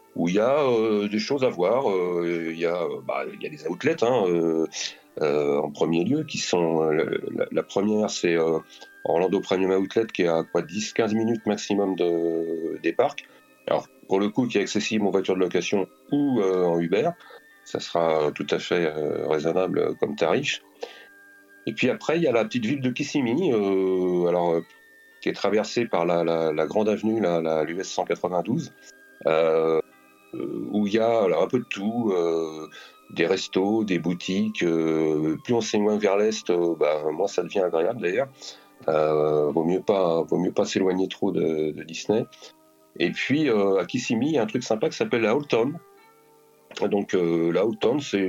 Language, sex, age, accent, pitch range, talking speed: French, male, 40-59, French, 80-110 Hz, 190 wpm